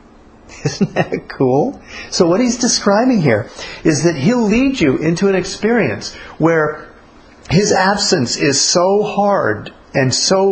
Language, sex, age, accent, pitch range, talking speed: English, male, 50-69, American, 125-185 Hz, 135 wpm